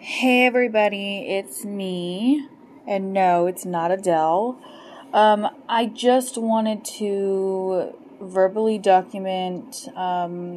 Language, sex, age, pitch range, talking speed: English, female, 20-39, 185-235 Hz, 95 wpm